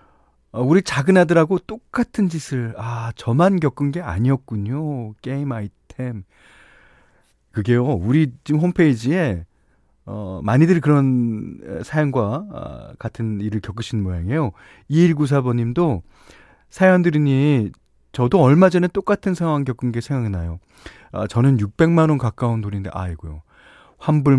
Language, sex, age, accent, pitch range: Korean, male, 30-49, native, 95-145 Hz